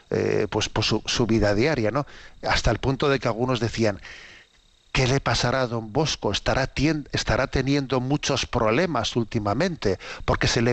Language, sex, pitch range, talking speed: Spanish, male, 110-130 Hz, 180 wpm